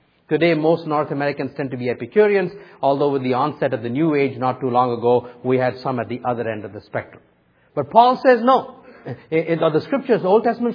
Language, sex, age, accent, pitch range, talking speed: English, male, 50-69, Indian, 150-225 Hz, 225 wpm